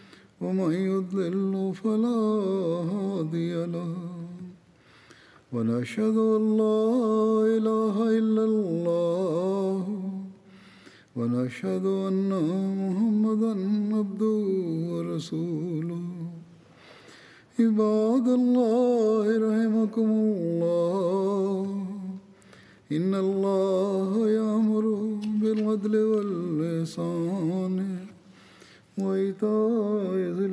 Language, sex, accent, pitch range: Tamil, male, native, 170-215 Hz